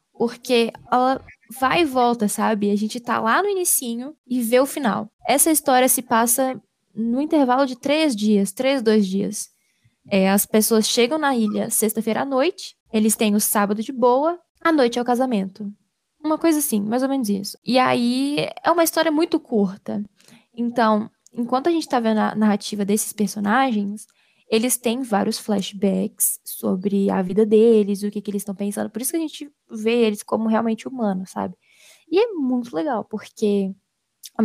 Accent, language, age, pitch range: Brazilian, Portuguese, 10-29, 210-260 Hz